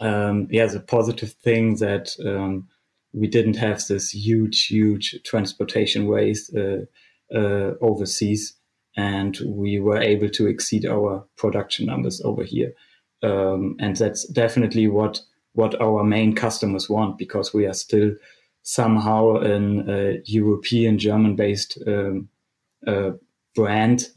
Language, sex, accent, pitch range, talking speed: English, male, German, 105-115 Hz, 125 wpm